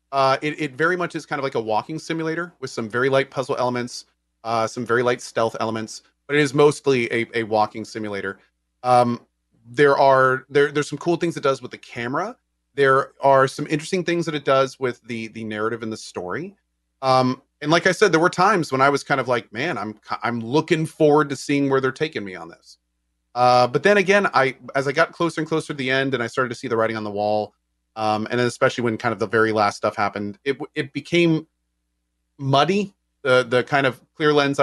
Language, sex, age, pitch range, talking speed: English, male, 30-49, 105-145 Hz, 230 wpm